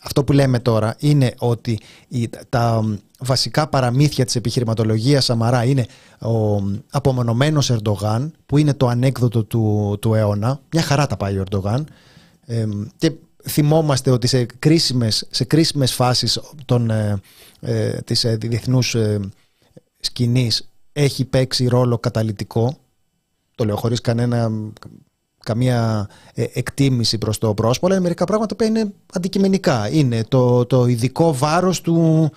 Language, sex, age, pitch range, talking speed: Greek, male, 30-49, 115-150 Hz, 120 wpm